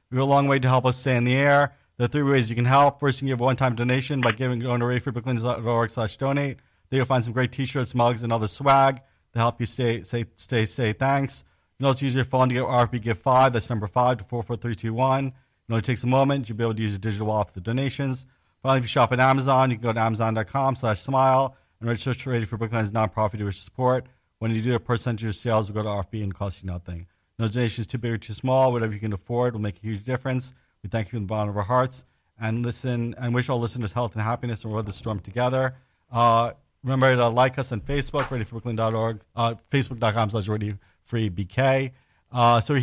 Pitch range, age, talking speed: 110-130 Hz, 40-59, 245 wpm